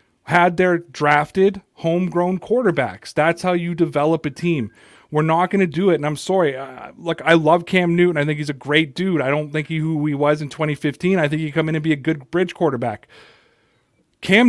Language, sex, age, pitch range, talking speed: English, male, 30-49, 140-175 Hz, 220 wpm